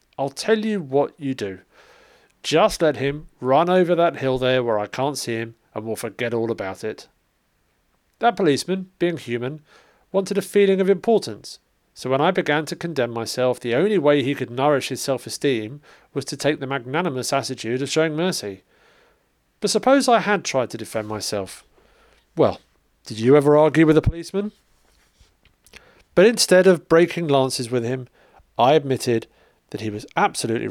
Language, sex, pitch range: English, male, 115-165 Hz